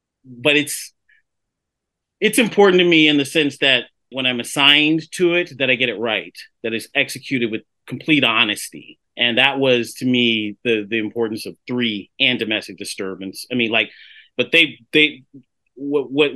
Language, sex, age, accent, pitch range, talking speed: English, male, 30-49, American, 115-140 Hz, 170 wpm